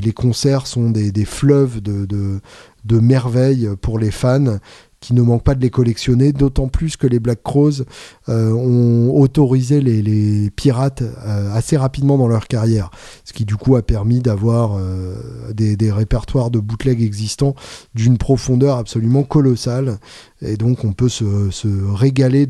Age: 20-39